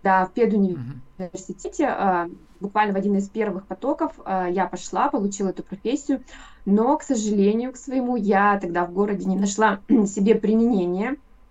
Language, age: Russian, 20-39